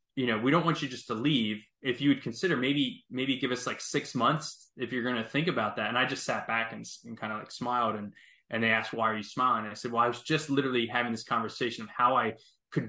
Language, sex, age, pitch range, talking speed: English, male, 20-39, 115-130 Hz, 285 wpm